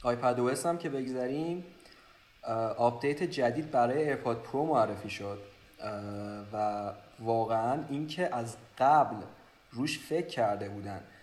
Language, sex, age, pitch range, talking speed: Persian, male, 30-49, 110-140 Hz, 105 wpm